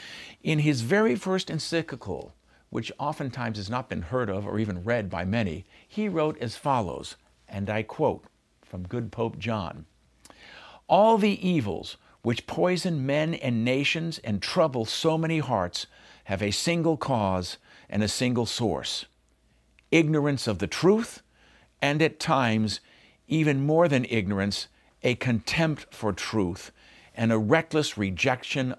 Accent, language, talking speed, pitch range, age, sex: American, English, 140 wpm, 110-155 Hz, 50-69, male